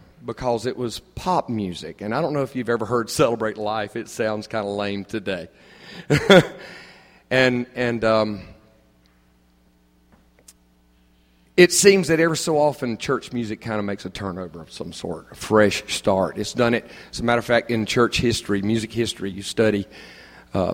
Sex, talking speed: male, 170 wpm